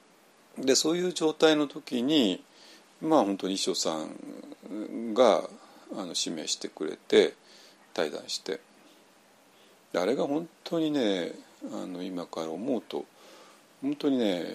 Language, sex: Japanese, male